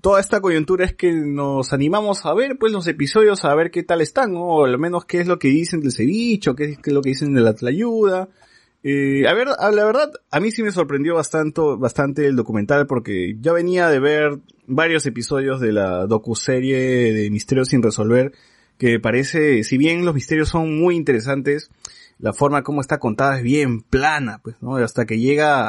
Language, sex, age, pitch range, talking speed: Spanish, male, 20-39, 120-165 Hz, 205 wpm